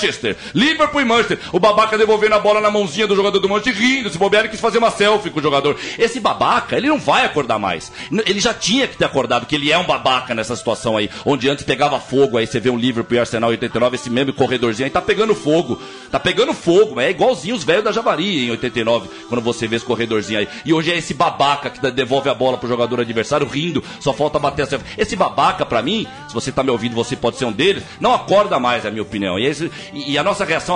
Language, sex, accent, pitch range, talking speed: Portuguese, male, Brazilian, 130-210 Hz, 255 wpm